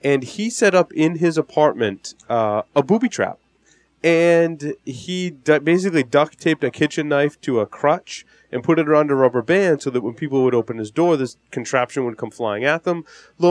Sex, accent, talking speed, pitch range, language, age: male, American, 200 wpm, 115-155 Hz, English, 20-39